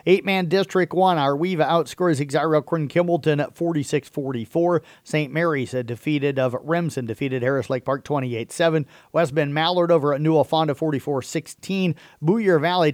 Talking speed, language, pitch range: 145 wpm, English, 135-165 Hz